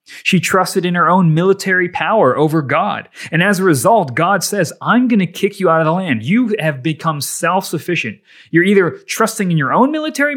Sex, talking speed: male, 205 wpm